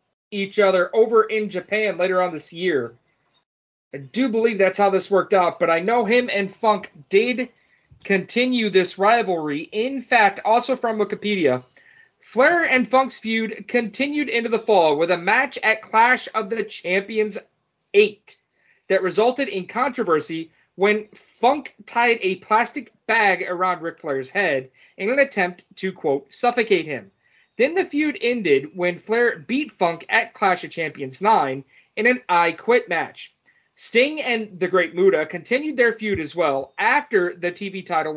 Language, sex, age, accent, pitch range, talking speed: English, male, 30-49, American, 180-245 Hz, 160 wpm